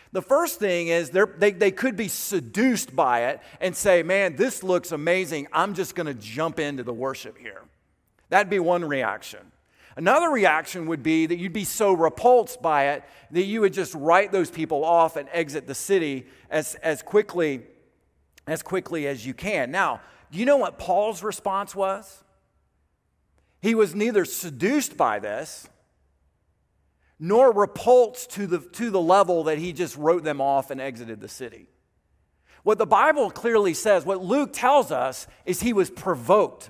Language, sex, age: English, male, 40-59